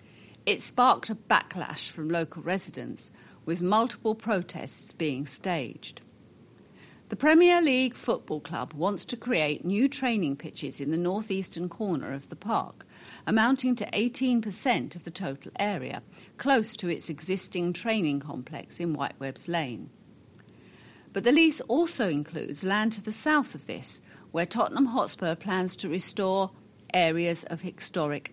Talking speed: 140 wpm